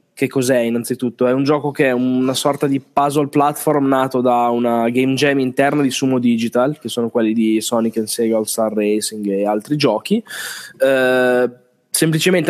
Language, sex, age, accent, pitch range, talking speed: Italian, male, 20-39, native, 120-145 Hz, 175 wpm